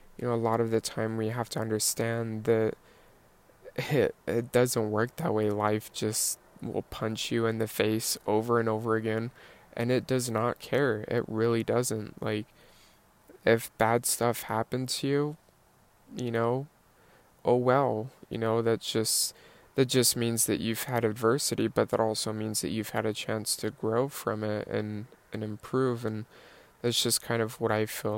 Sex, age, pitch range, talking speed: male, 20-39, 110-120 Hz, 180 wpm